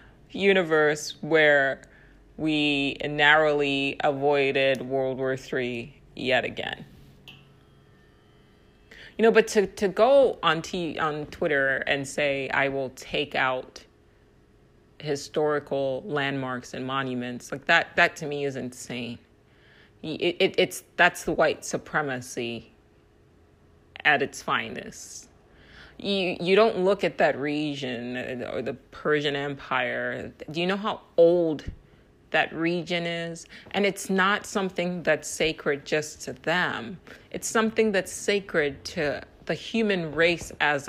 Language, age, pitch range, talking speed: English, 30-49, 130-175 Hz, 125 wpm